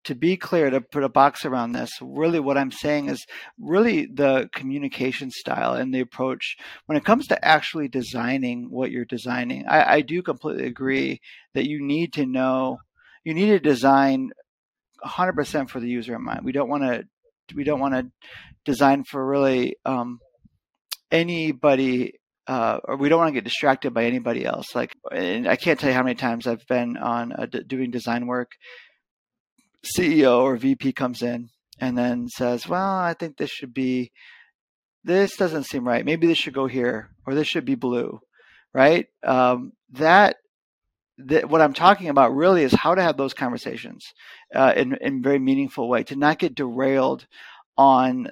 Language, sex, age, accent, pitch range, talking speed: English, male, 40-59, American, 125-155 Hz, 180 wpm